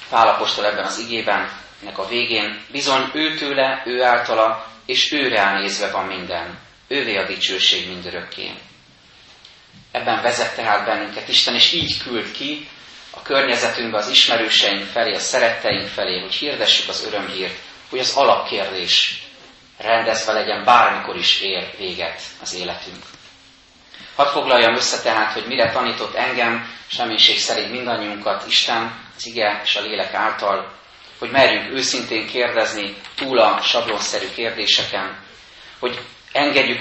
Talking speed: 130 wpm